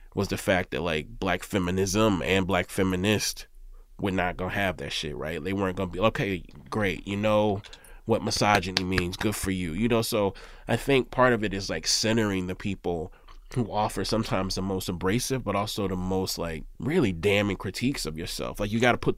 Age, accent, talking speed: 20-39, American, 210 wpm